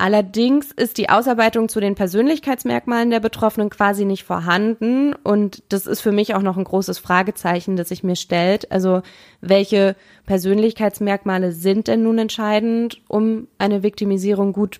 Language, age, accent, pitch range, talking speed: German, 20-39, German, 185-220 Hz, 150 wpm